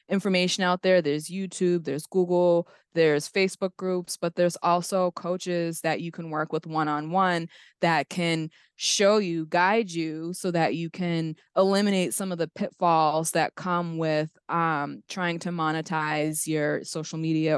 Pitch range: 155-180 Hz